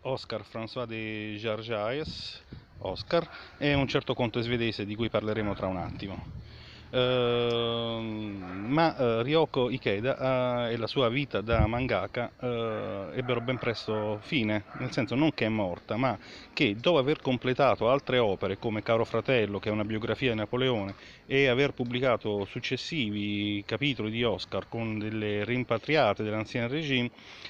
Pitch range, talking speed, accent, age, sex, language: 105-130 Hz, 135 wpm, native, 30-49, male, Italian